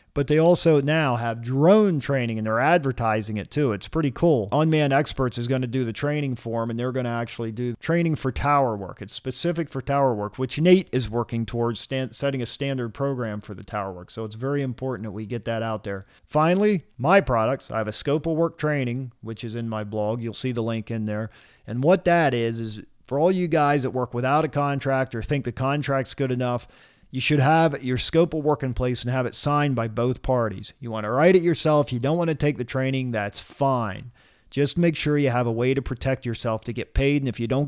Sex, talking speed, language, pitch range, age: male, 240 wpm, English, 115-145 Hz, 40-59